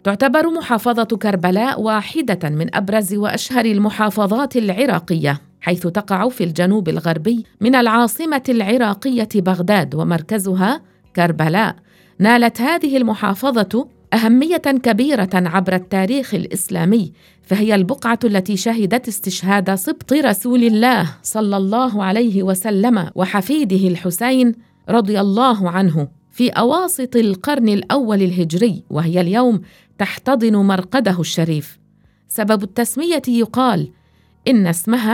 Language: English